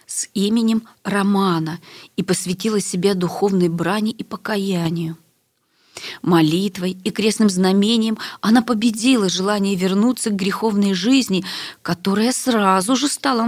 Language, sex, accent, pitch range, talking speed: Russian, female, native, 155-215 Hz, 110 wpm